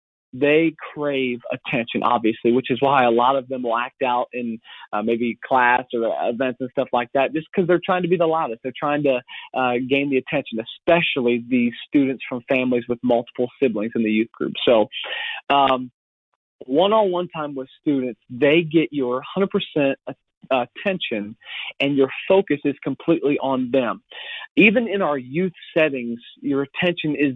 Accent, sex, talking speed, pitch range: American, male, 175 wpm, 130-165 Hz